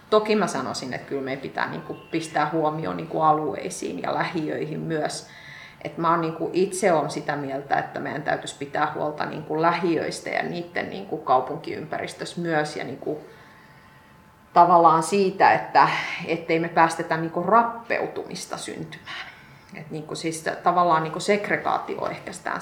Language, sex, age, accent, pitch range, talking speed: Finnish, female, 30-49, native, 155-175 Hz, 145 wpm